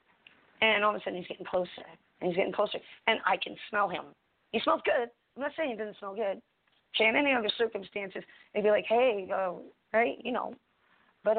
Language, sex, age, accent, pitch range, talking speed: English, female, 40-59, American, 180-225 Hz, 215 wpm